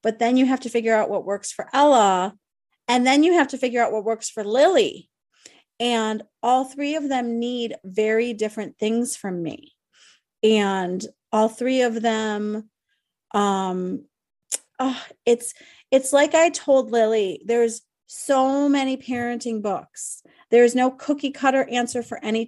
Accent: American